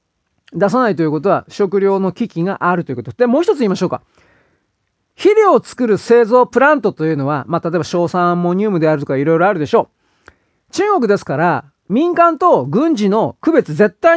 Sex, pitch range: male, 175-270 Hz